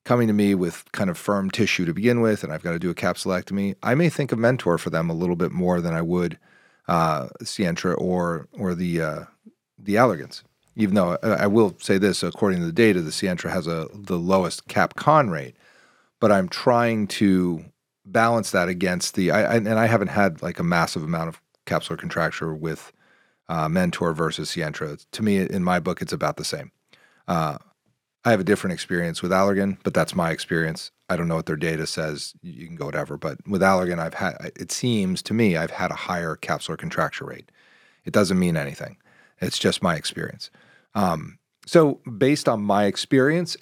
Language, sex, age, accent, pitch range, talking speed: English, male, 40-59, American, 90-115 Hz, 200 wpm